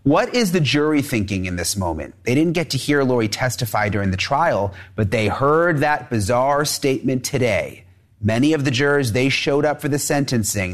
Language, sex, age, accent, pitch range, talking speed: English, male, 30-49, American, 105-140 Hz, 195 wpm